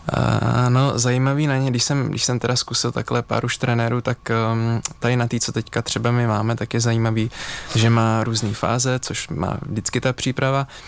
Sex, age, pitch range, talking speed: male, 20-39, 110-120 Hz, 205 wpm